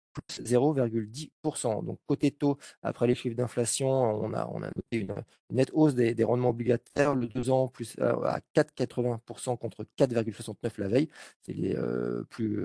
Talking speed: 170 wpm